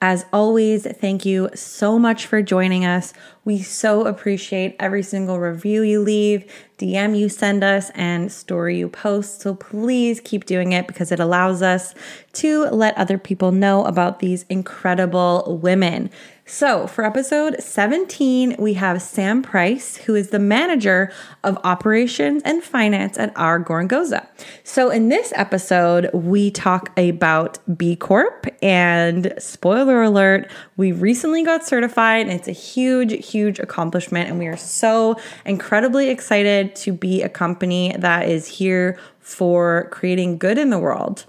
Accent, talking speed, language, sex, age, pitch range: American, 150 wpm, English, female, 20-39, 180-225 Hz